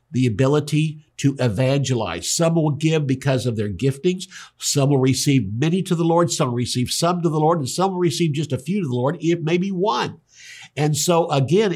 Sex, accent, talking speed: male, American, 210 wpm